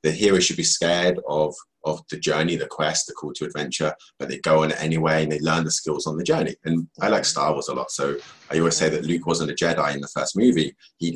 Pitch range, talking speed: 75-90 Hz, 270 wpm